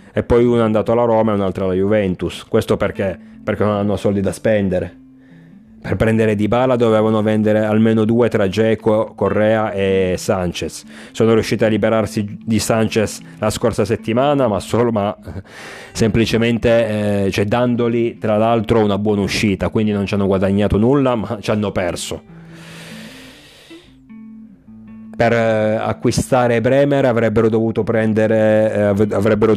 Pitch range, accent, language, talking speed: 100-115 Hz, native, Italian, 140 wpm